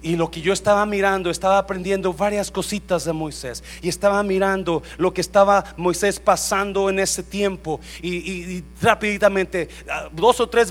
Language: Spanish